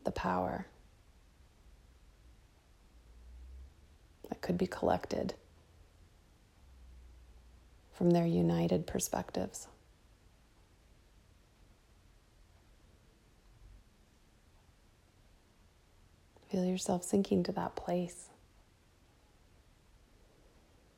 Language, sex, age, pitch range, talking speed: English, female, 30-49, 80-120 Hz, 45 wpm